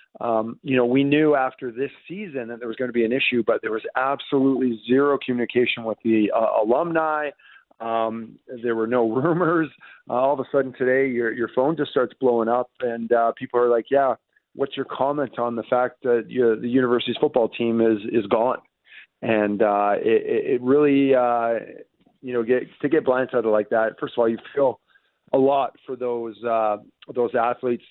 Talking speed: 200 wpm